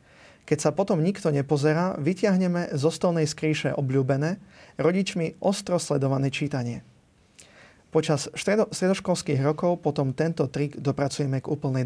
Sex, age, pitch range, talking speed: male, 30-49, 135-170 Hz, 120 wpm